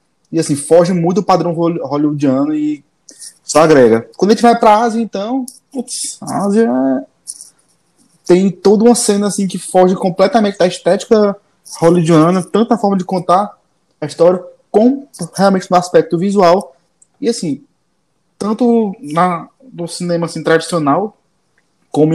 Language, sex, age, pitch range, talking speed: Portuguese, male, 20-39, 135-175 Hz, 140 wpm